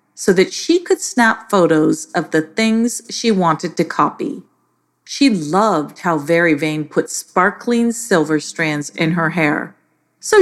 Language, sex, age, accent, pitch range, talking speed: English, female, 40-59, American, 155-240 Hz, 150 wpm